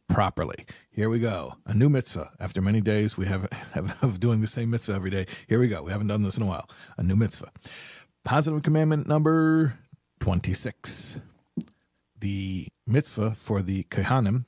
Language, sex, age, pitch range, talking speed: English, male, 40-59, 95-130 Hz, 175 wpm